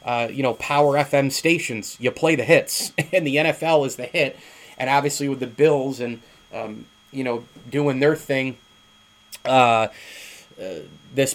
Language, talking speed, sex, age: English, 165 wpm, male, 30-49